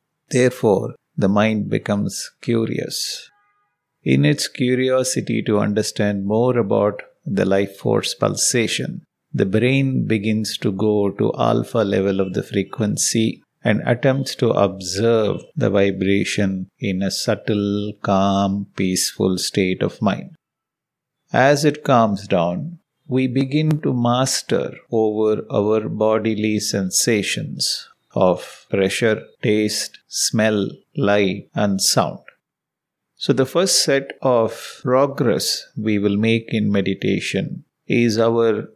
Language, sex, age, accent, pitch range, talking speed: English, male, 50-69, Indian, 100-130 Hz, 115 wpm